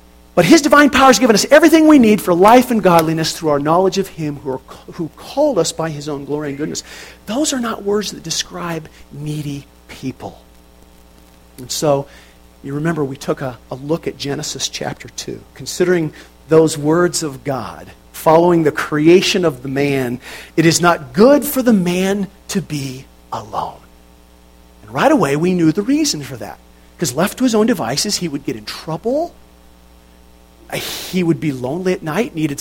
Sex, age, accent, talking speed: male, 50-69, American, 180 wpm